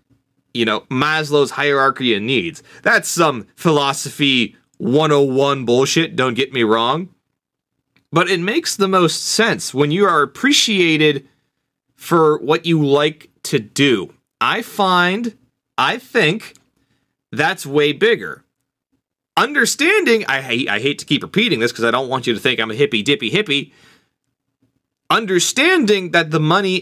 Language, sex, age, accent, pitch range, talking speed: English, male, 30-49, American, 135-195 Hz, 140 wpm